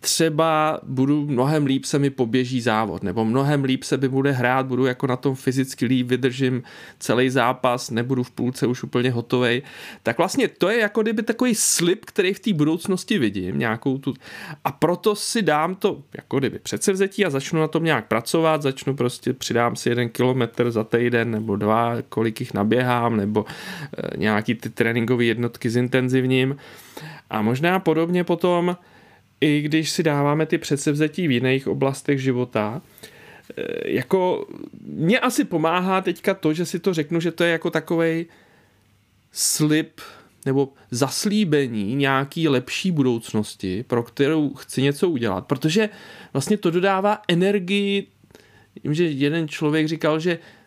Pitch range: 125-170 Hz